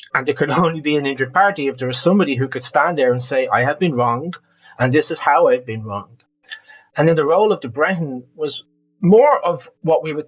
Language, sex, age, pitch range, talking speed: English, male, 30-49, 125-170 Hz, 245 wpm